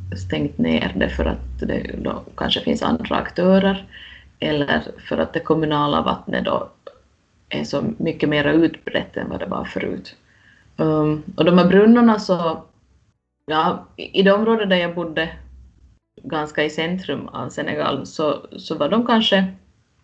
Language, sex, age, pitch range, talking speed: Swedish, female, 20-39, 155-195 Hz, 155 wpm